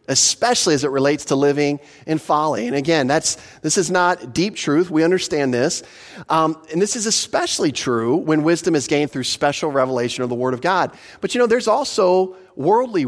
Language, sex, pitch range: English, male, 130-180 Hz